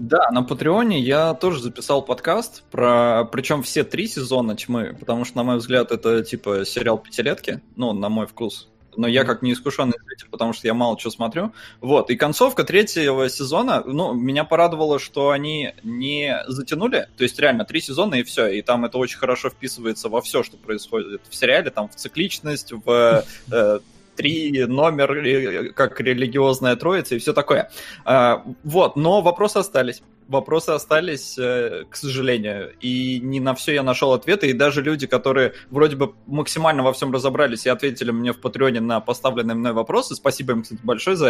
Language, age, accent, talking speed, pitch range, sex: Russian, 20-39, native, 175 wpm, 120-150 Hz, male